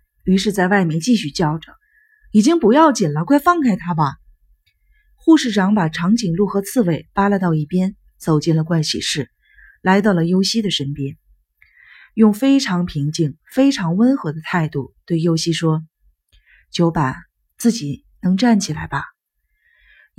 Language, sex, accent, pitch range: Chinese, female, native, 160-225 Hz